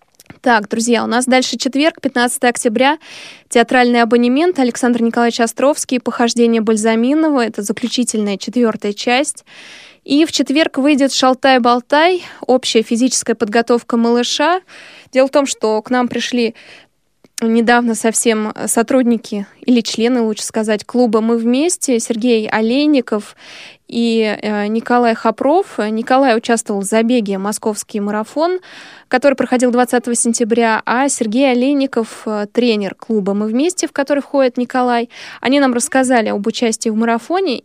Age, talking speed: 20-39, 130 wpm